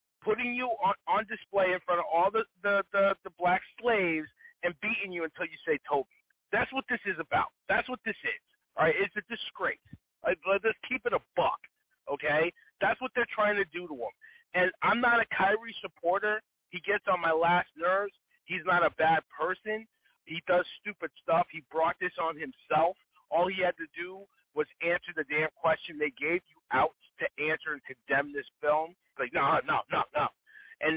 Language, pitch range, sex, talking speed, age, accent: English, 170-235 Hz, male, 200 wpm, 40-59, American